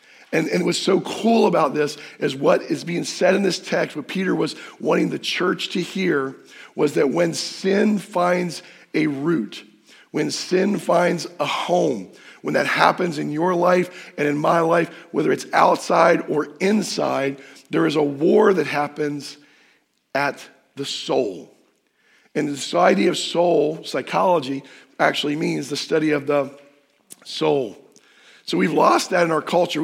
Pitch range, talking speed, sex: 150-185 Hz, 155 wpm, male